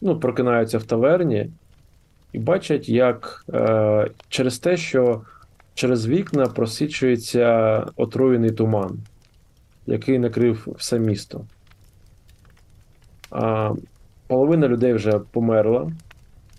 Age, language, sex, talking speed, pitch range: 20-39, Ukrainian, male, 90 wpm, 110-135 Hz